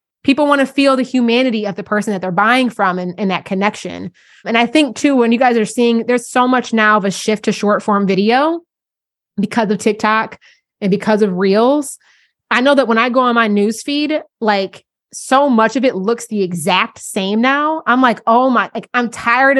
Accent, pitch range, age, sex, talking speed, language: American, 190-240 Hz, 20-39, female, 210 wpm, English